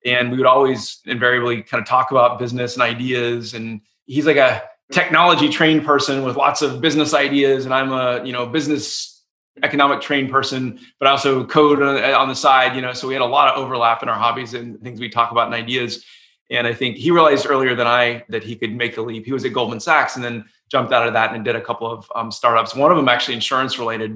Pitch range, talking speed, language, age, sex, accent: 120-145 Hz, 240 wpm, English, 30-49, male, American